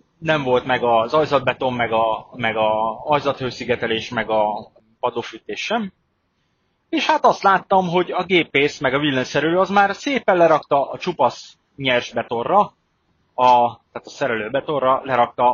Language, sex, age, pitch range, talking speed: Hungarian, male, 30-49, 115-150 Hz, 145 wpm